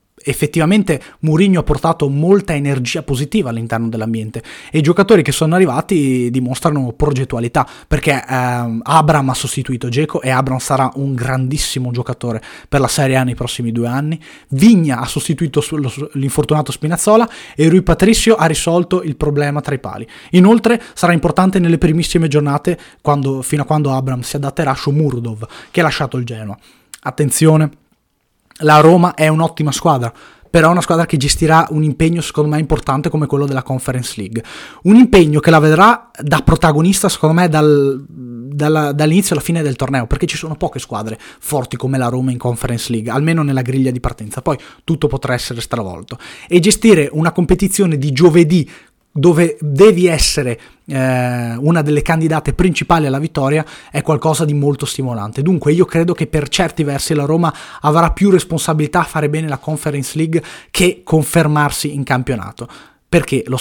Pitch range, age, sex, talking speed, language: 130-165 Hz, 20-39, male, 165 wpm, Italian